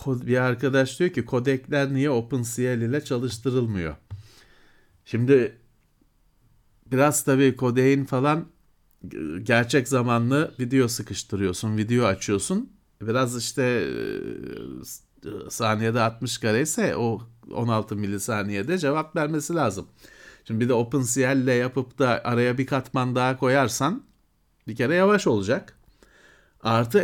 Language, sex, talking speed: Turkish, male, 110 wpm